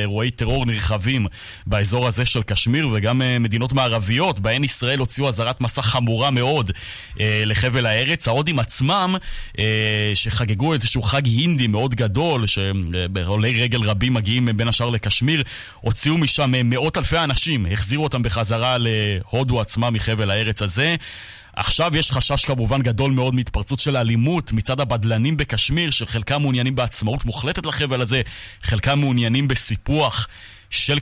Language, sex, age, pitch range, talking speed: Hebrew, male, 30-49, 105-125 Hz, 135 wpm